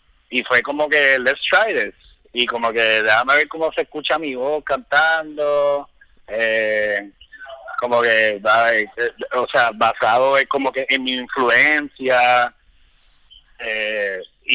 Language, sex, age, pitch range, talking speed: Spanish, male, 30-49, 115-150 Hz, 130 wpm